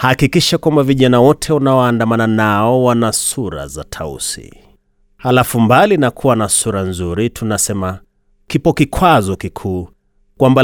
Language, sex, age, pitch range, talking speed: Swahili, male, 30-49, 95-135 Hz, 125 wpm